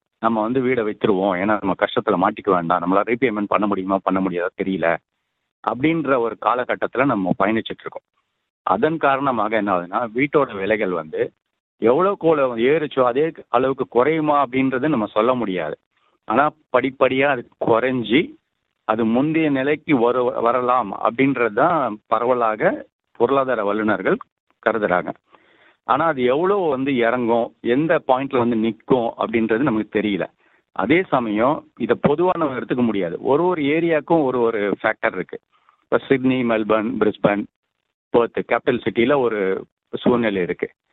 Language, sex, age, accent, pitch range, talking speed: Tamil, male, 50-69, native, 110-140 Hz, 125 wpm